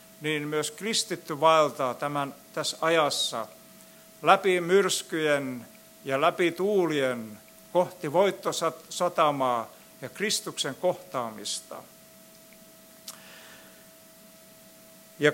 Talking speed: 70 wpm